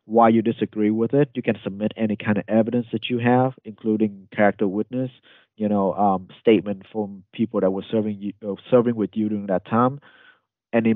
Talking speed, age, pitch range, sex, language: 195 wpm, 30-49, 100-115 Hz, male, English